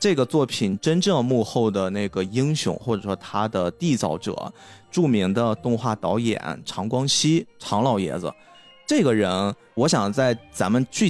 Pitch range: 95-135 Hz